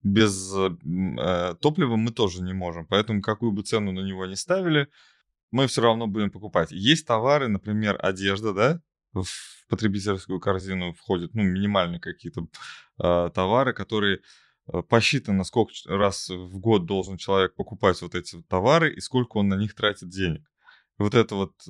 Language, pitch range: Russian, 95-125 Hz